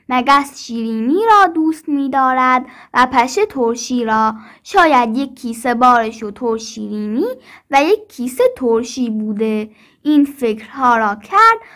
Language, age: Persian, 10-29